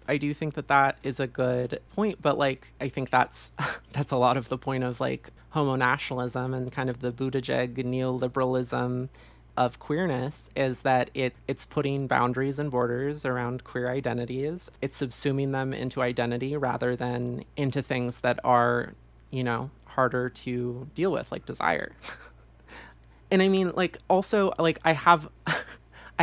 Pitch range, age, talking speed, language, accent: 125-145 Hz, 30-49, 160 wpm, English, American